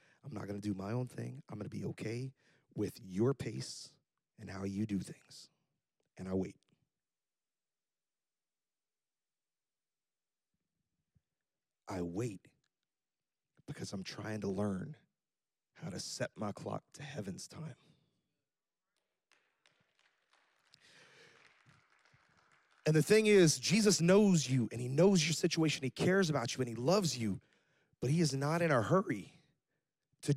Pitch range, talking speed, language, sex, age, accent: 120-165 Hz, 130 wpm, English, male, 30-49, American